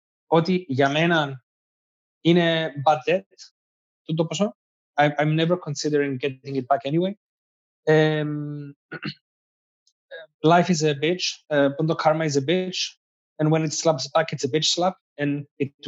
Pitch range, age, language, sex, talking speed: 145-180 Hz, 20-39, Greek, male, 140 wpm